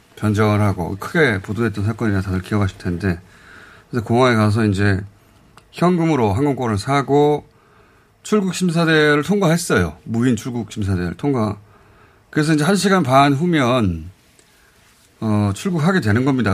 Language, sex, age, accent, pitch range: Korean, male, 30-49, native, 100-140 Hz